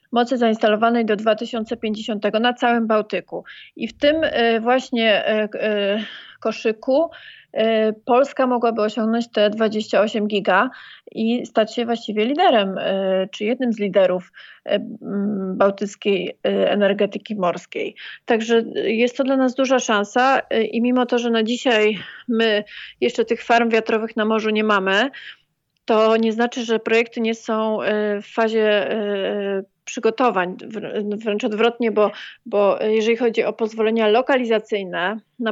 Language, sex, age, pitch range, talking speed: Polish, female, 30-49, 210-235 Hz, 120 wpm